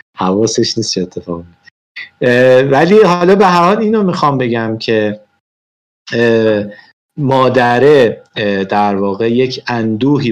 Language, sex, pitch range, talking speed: Persian, male, 105-145 Hz, 110 wpm